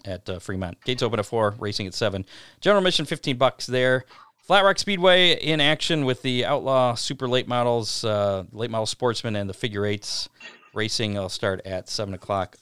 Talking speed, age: 190 wpm, 40-59